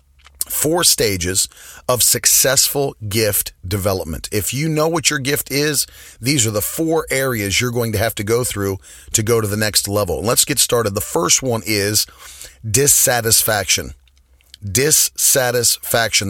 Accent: American